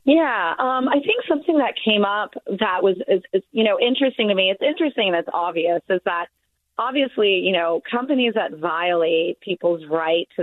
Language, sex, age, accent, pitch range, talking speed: English, female, 30-49, American, 175-240 Hz, 190 wpm